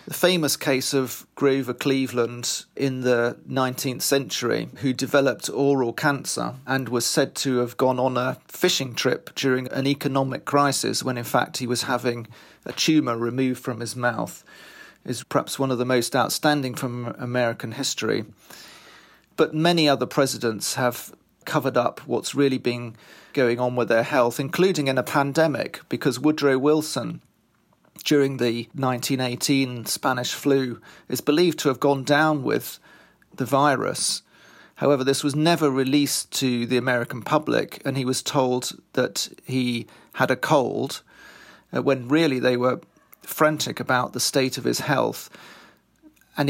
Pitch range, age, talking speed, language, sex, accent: 125-145 Hz, 40-59, 150 wpm, English, male, British